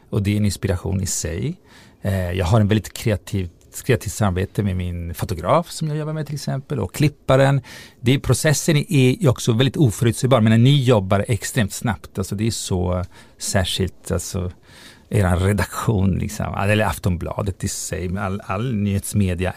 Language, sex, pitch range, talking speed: Swedish, male, 100-135 Hz, 165 wpm